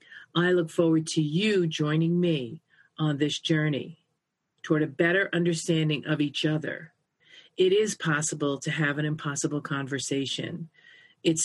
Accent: American